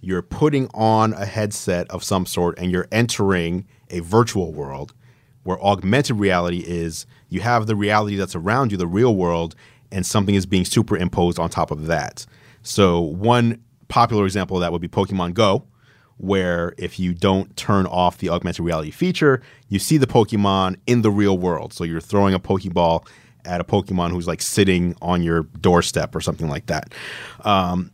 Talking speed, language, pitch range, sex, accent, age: 180 wpm, English, 90-115 Hz, male, American, 30-49